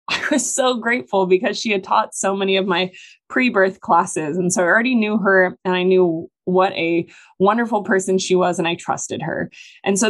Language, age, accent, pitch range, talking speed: English, 20-39, American, 180-205 Hz, 210 wpm